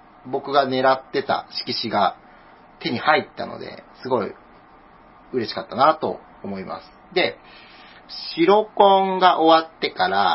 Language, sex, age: Japanese, male, 40-59